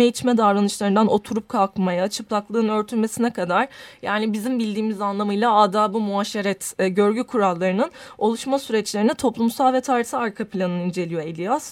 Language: Turkish